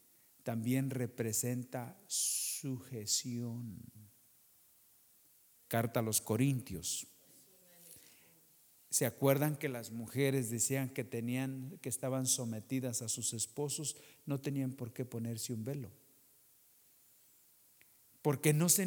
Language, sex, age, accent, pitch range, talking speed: English, male, 50-69, Mexican, 125-175 Hz, 100 wpm